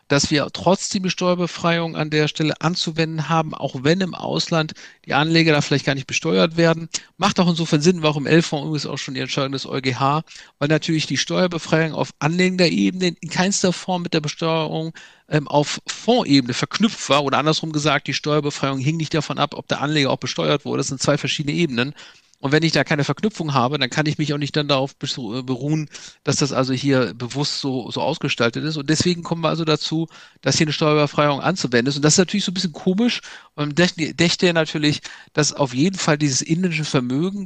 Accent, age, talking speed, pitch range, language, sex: German, 50-69, 205 wpm, 145-170 Hz, German, male